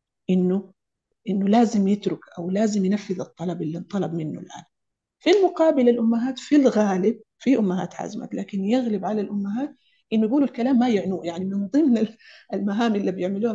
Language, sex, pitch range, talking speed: Arabic, female, 185-225 Hz, 155 wpm